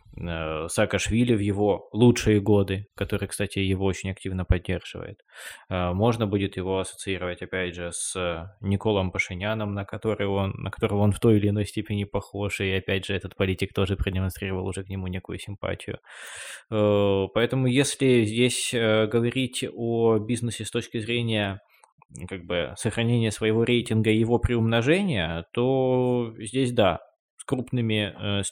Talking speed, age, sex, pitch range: 135 wpm, 20-39, male, 95-120 Hz